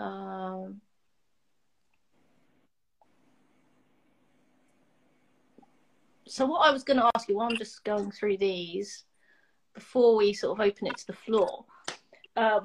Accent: British